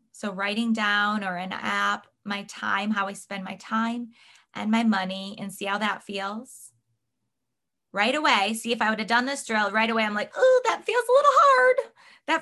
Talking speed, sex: 205 wpm, female